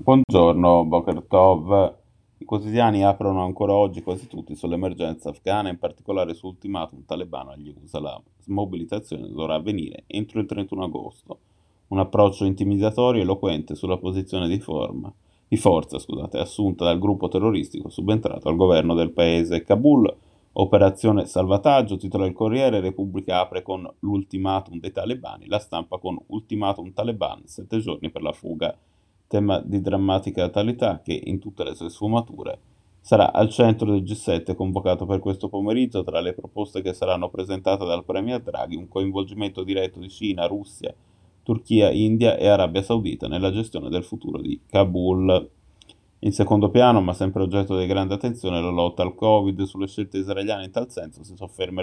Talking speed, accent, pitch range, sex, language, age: 155 wpm, native, 90-105 Hz, male, Italian, 30-49